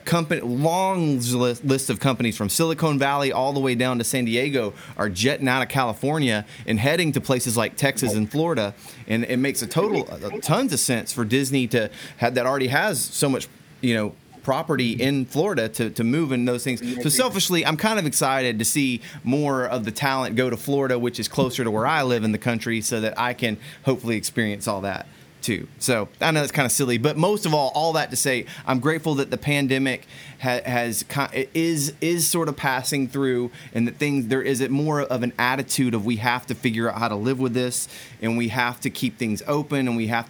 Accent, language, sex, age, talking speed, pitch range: American, English, male, 30-49, 225 wpm, 120-140 Hz